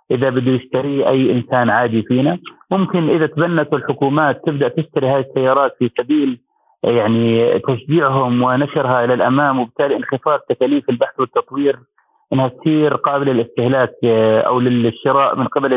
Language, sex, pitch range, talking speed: Arabic, male, 125-160 Hz, 135 wpm